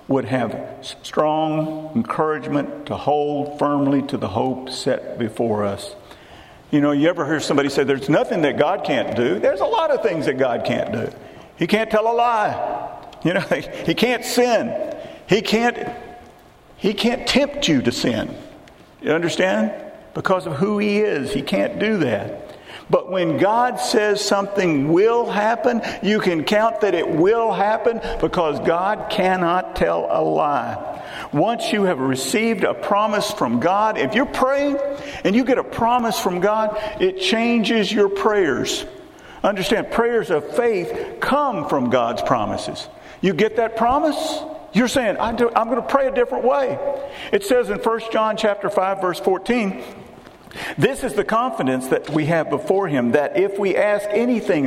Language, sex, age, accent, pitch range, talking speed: English, male, 50-69, American, 170-240 Hz, 165 wpm